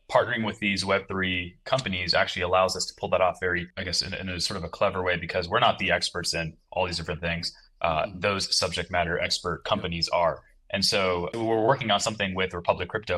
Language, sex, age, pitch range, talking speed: English, male, 20-39, 90-100 Hz, 230 wpm